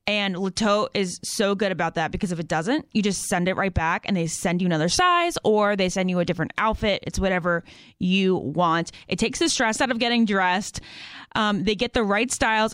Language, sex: English, female